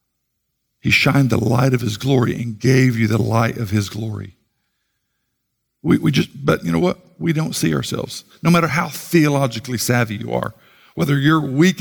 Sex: male